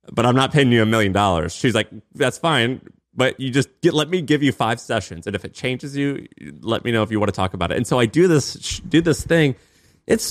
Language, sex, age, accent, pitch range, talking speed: English, male, 20-39, American, 100-125 Hz, 270 wpm